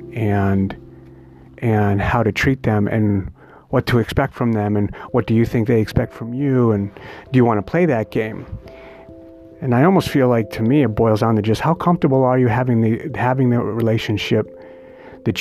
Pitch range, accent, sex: 105-135 Hz, American, male